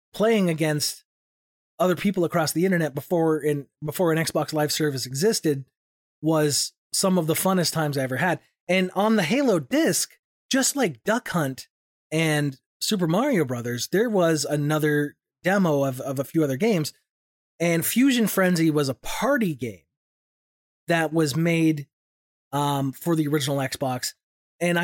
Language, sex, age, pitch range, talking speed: English, male, 30-49, 140-185 Hz, 150 wpm